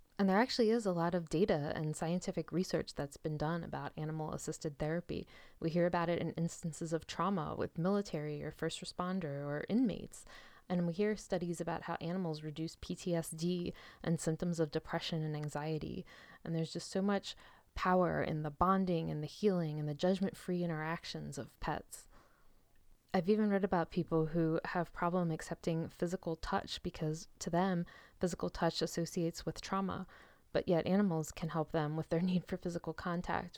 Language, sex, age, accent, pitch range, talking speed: English, female, 20-39, American, 160-180 Hz, 175 wpm